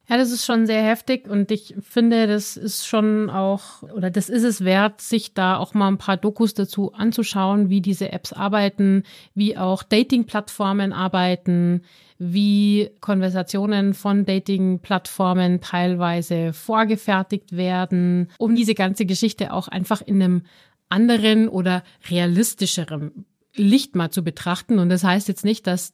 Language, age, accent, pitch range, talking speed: German, 30-49, German, 190-220 Hz, 150 wpm